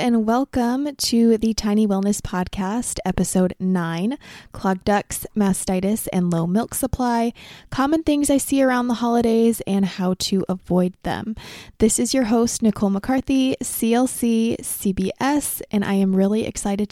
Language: English